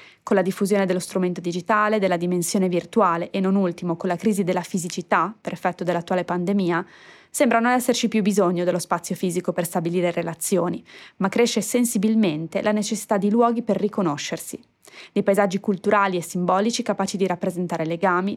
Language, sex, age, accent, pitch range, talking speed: Italian, female, 20-39, native, 180-220 Hz, 165 wpm